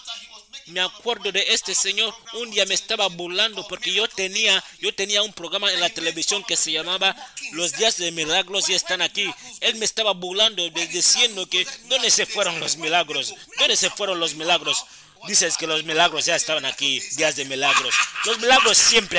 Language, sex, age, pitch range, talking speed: Spanish, male, 30-49, 165-225 Hz, 190 wpm